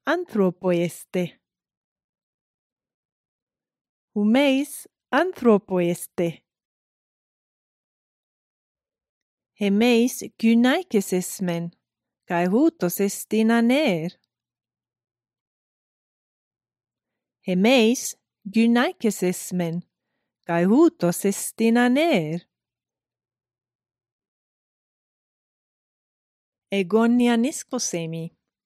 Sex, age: female, 30-49